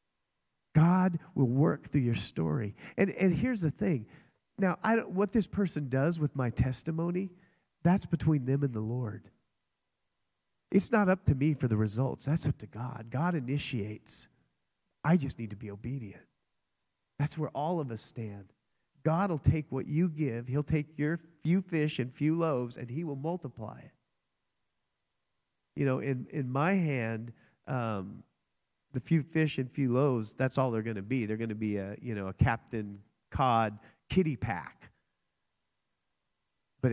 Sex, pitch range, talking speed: male, 105-150 Hz, 170 wpm